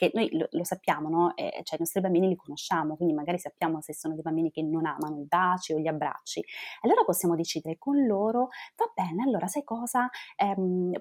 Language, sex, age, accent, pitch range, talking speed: Italian, female, 20-39, native, 165-210 Hz, 205 wpm